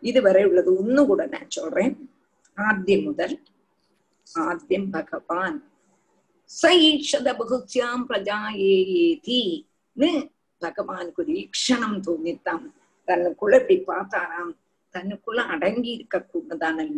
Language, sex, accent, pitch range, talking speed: Tamil, female, native, 200-300 Hz, 45 wpm